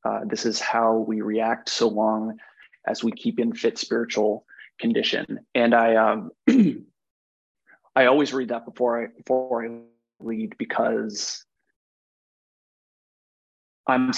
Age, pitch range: 30-49, 115-125 Hz